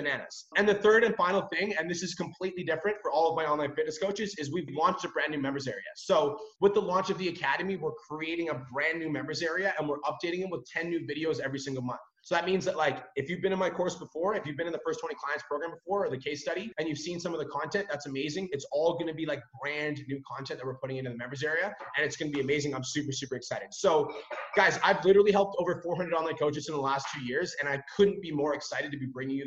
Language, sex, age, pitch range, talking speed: English, male, 20-39, 145-190 Hz, 275 wpm